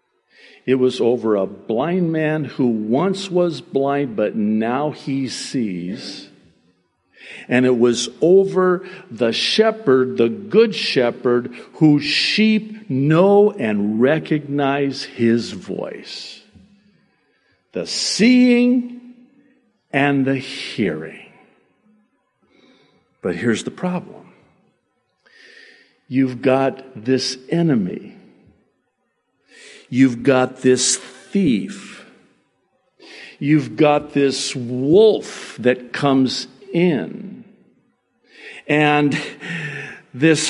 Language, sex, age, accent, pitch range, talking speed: English, male, 50-69, American, 125-205 Hz, 85 wpm